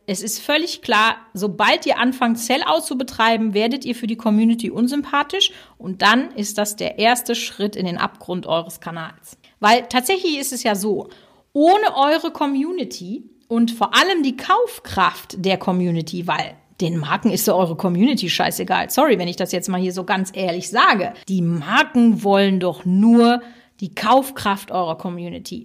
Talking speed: 170 wpm